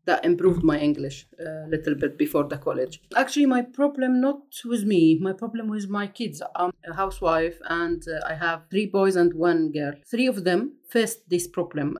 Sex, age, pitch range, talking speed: female, 30-49, 160-205 Hz, 195 wpm